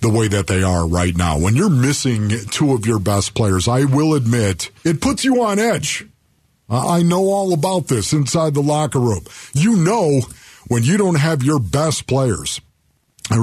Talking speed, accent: 190 wpm, American